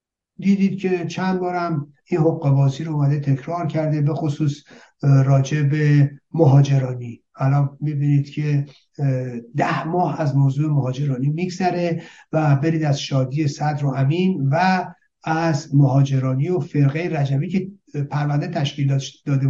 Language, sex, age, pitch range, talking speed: Persian, male, 60-79, 140-185 Hz, 125 wpm